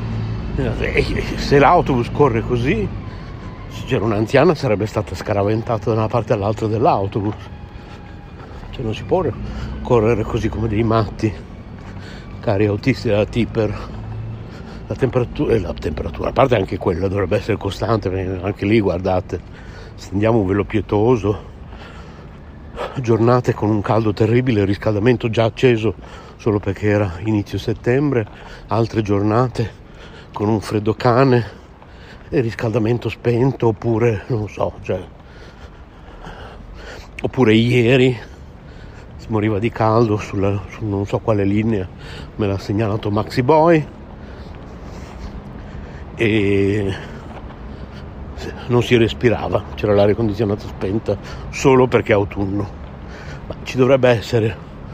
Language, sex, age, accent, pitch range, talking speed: Italian, male, 60-79, native, 100-120 Hz, 115 wpm